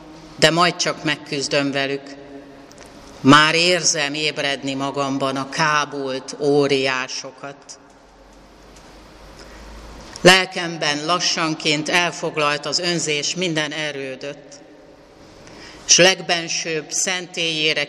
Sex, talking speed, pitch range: female, 75 wpm, 135-155 Hz